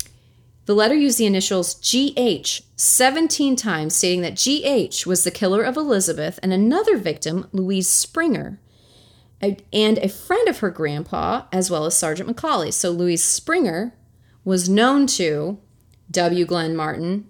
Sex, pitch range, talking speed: female, 160-235 Hz, 140 wpm